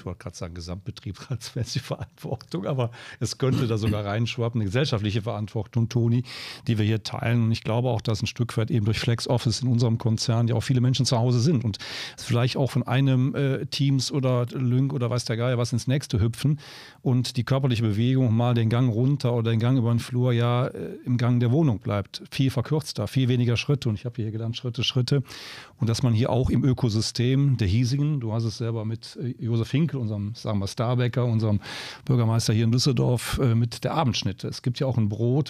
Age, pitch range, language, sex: 40-59, 115-135 Hz, German, male